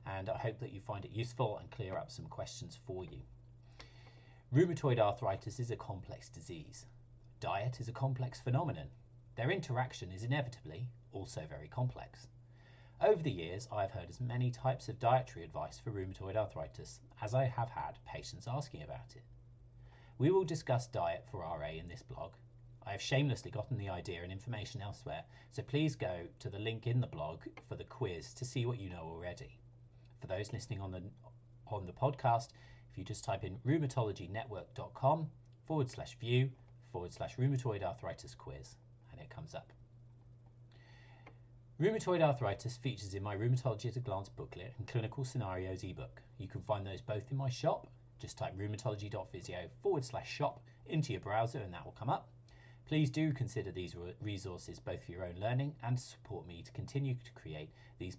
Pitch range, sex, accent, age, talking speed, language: 115-130 Hz, male, British, 40-59, 175 wpm, English